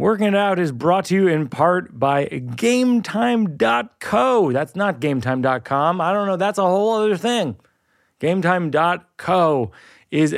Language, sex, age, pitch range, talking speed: English, male, 30-49, 130-175 Hz, 140 wpm